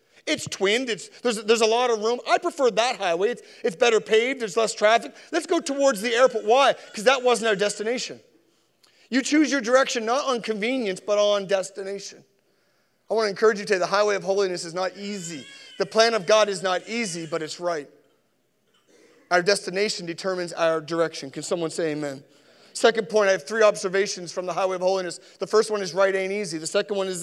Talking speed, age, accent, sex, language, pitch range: 210 wpm, 40-59, American, male, English, 195-255 Hz